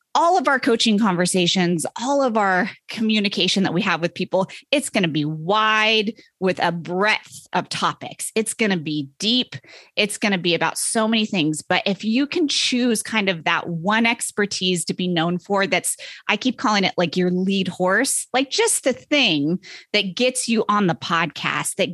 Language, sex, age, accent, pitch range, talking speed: English, female, 30-49, American, 180-240 Hz, 195 wpm